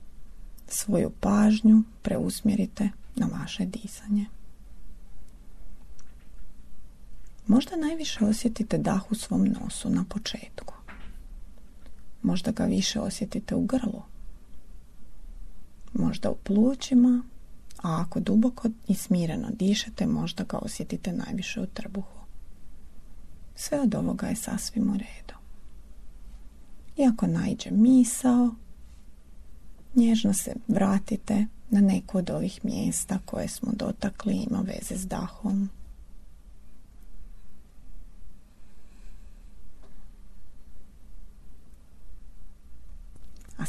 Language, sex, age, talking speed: Croatian, female, 30-49, 85 wpm